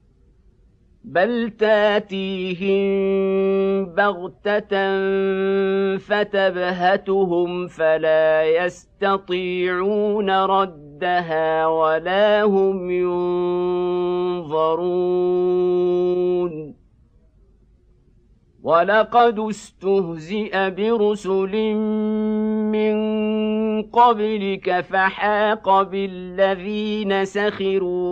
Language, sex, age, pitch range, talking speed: Arabic, male, 50-69, 180-205 Hz, 40 wpm